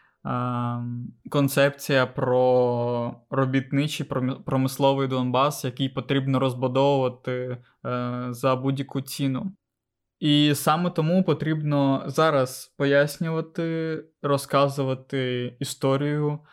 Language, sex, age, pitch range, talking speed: Ukrainian, male, 20-39, 130-140 Hz, 70 wpm